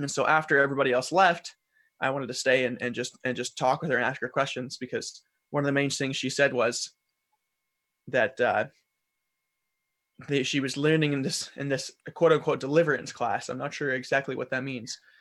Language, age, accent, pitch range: English, 20-39, American, 125-150 Hz